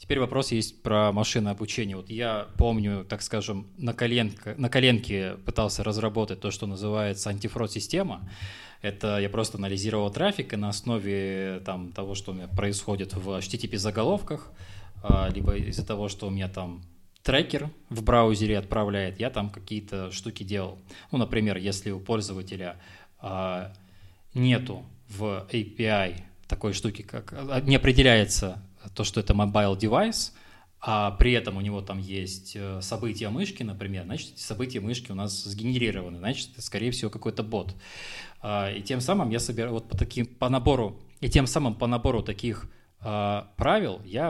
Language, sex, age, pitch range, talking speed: Russian, male, 20-39, 95-115 Hz, 155 wpm